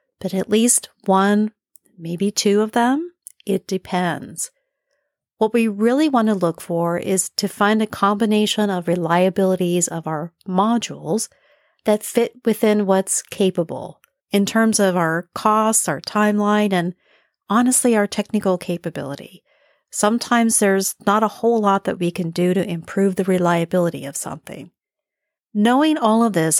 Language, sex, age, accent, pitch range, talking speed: English, female, 50-69, American, 175-220 Hz, 145 wpm